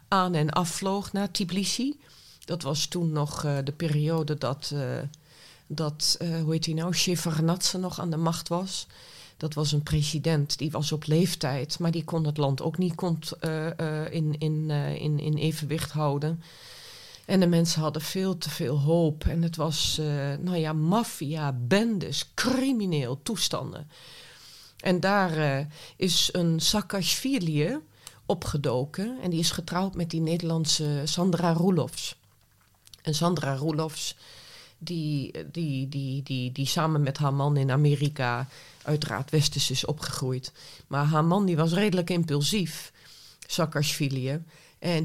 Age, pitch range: 40-59, 145-170 Hz